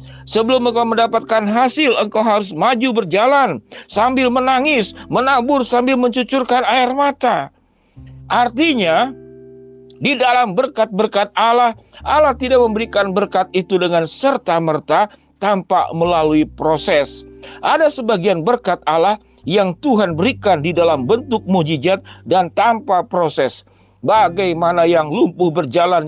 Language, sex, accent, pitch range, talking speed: Indonesian, male, native, 160-225 Hz, 110 wpm